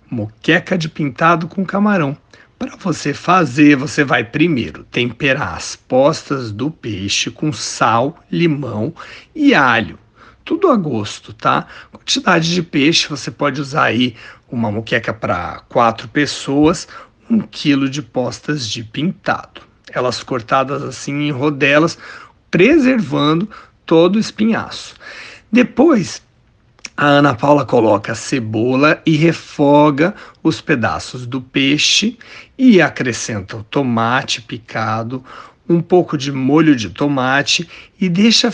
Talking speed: 120 wpm